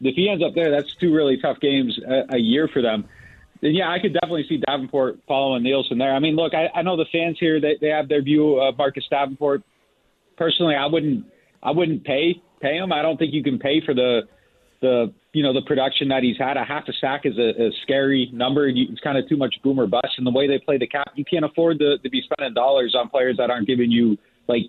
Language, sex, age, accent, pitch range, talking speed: English, male, 40-59, American, 120-150 Hz, 255 wpm